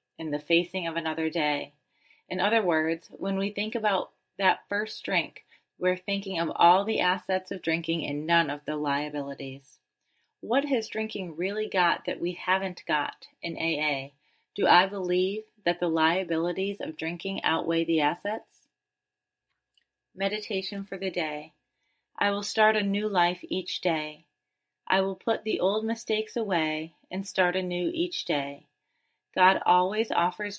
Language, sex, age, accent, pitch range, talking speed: English, female, 30-49, American, 160-195 Hz, 155 wpm